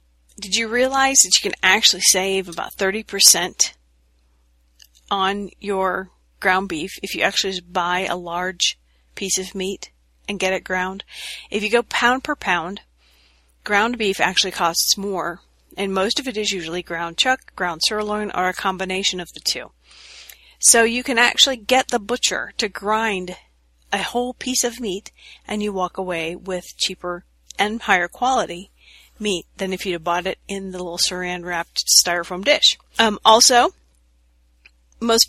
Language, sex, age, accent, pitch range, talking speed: English, female, 40-59, American, 175-220 Hz, 160 wpm